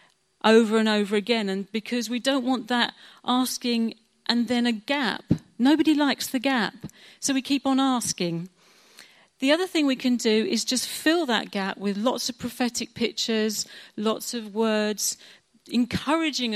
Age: 40-59